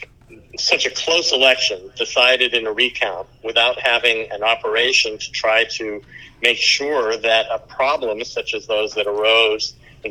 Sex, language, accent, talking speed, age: male, English, American, 155 wpm, 50-69